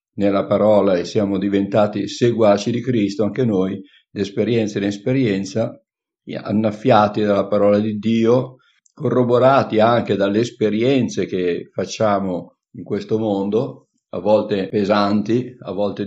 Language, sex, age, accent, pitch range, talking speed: Italian, male, 50-69, native, 100-115 Hz, 125 wpm